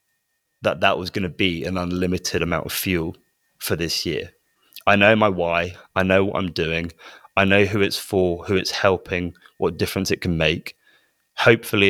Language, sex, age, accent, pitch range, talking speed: English, male, 20-39, British, 85-105 Hz, 180 wpm